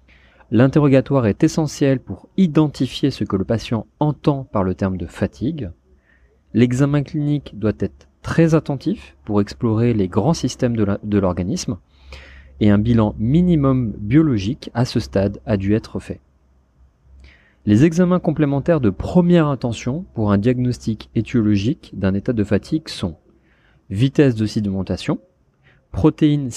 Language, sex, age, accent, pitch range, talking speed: French, male, 30-49, French, 100-145 Hz, 140 wpm